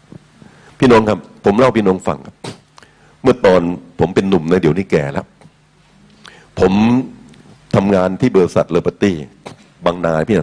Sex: male